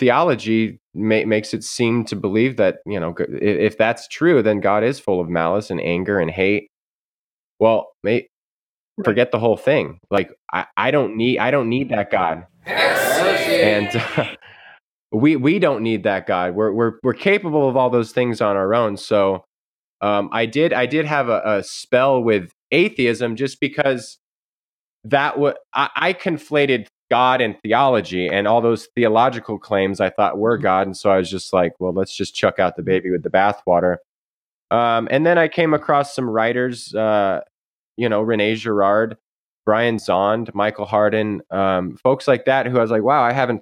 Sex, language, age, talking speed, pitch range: male, English, 20-39, 185 wpm, 100-125 Hz